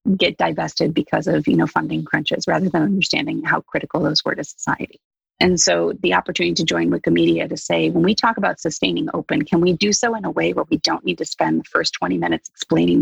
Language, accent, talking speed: English, American, 230 wpm